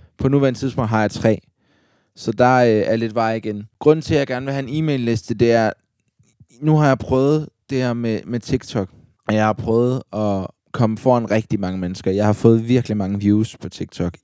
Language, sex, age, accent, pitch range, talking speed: Danish, male, 20-39, native, 105-120 Hz, 215 wpm